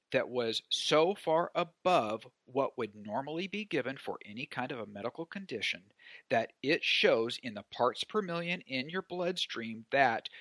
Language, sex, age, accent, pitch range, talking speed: English, male, 50-69, American, 125-180 Hz, 165 wpm